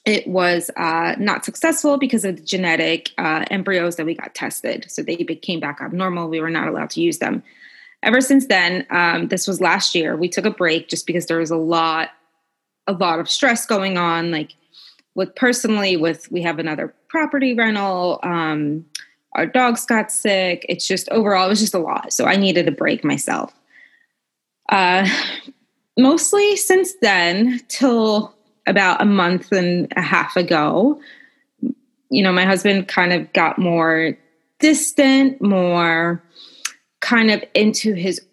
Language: English